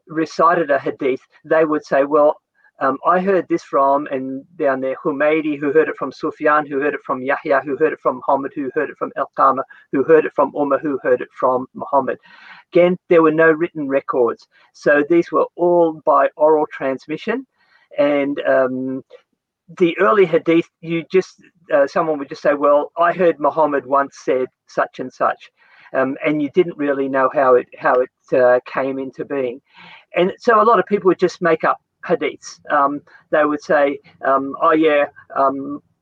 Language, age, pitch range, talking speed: English, 50-69, 140-175 Hz, 190 wpm